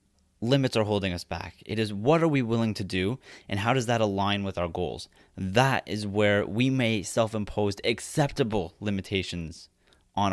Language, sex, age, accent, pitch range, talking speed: English, male, 30-49, American, 100-125 Hz, 175 wpm